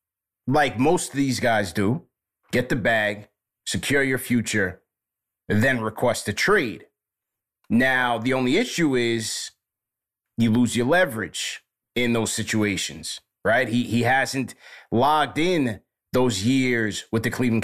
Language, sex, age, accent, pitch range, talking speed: English, male, 30-49, American, 115-135 Hz, 135 wpm